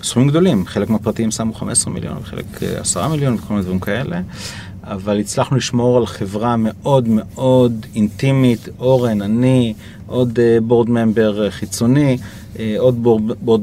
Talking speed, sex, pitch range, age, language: 130 wpm, male, 105-130 Hz, 30-49, Hebrew